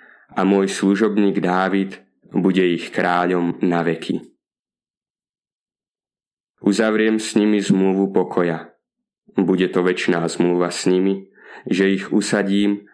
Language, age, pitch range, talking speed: Slovak, 20-39, 90-100 Hz, 105 wpm